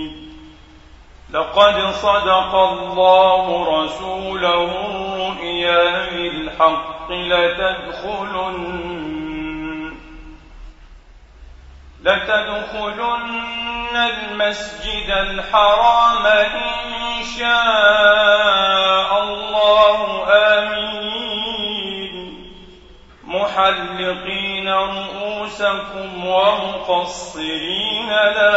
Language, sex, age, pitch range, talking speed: Arabic, male, 40-59, 180-215 Hz, 35 wpm